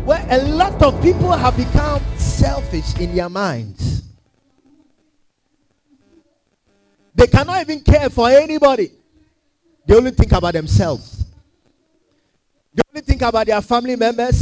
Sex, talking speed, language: male, 120 wpm, English